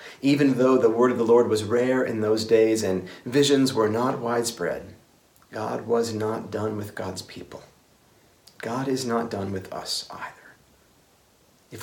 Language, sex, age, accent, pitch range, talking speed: English, male, 40-59, American, 95-120 Hz, 160 wpm